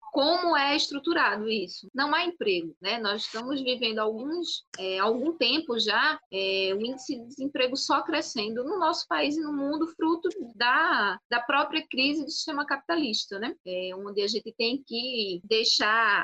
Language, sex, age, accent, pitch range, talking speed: Portuguese, female, 20-39, Brazilian, 220-300 Hz, 170 wpm